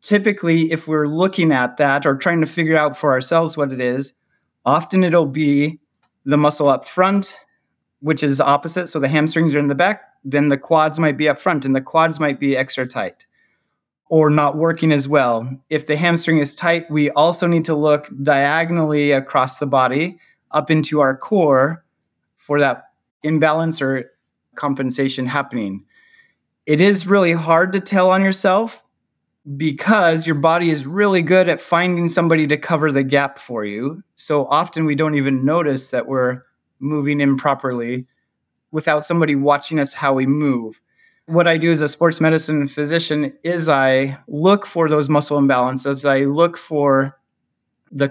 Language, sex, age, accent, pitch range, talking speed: English, male, 30-49, American, 140-165 Hz, 170 wpm